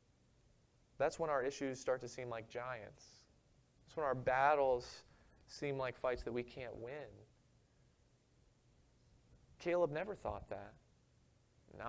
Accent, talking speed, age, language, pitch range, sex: American, 125 wpm, 30-49, English, 120-150 Hz, male